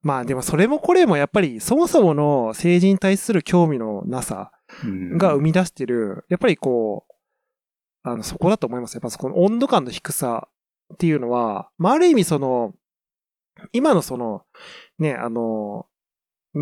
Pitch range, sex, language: 135-200 Hz, male, Japanese